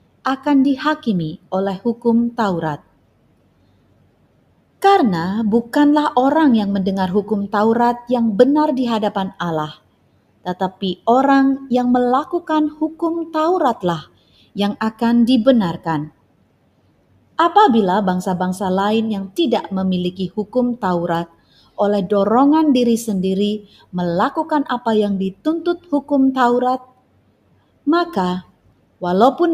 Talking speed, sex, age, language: 95 wpm, female, 30-49, Indonesian